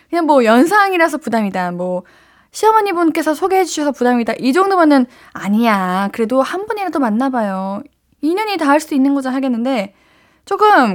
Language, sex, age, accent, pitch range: Korean, female, 10-29, native, 220-310 Hz